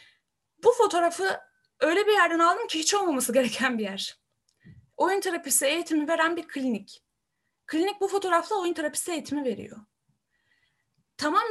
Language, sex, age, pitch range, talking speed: Turkish, female, 10-29, 255-355 Hz, 135 wpm